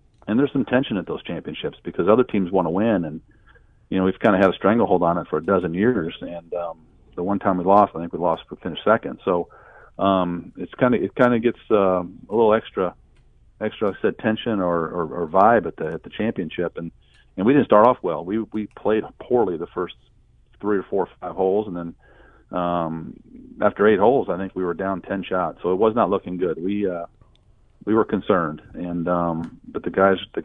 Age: 40-59